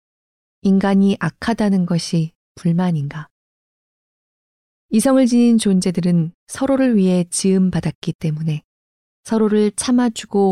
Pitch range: 165-205 Hz